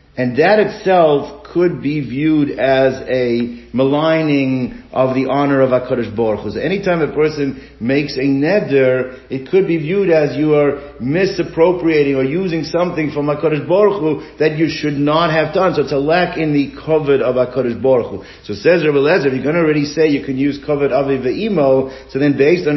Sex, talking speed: male, 190 wpm